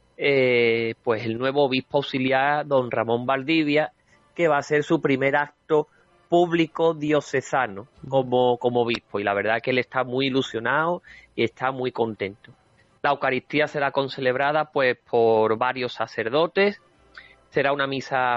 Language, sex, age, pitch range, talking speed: Spanish, male, 30-49, 115-145 Hz, 145 wpm